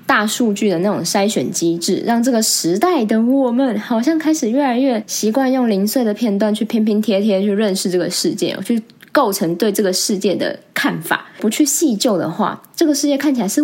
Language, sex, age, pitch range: Chinese, female, 20-39, 205-275 Hz